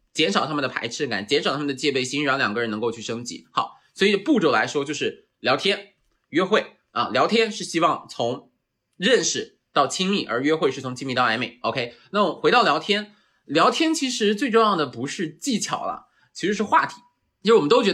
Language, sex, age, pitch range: Chinese, male, 20-39, 145-230 Hz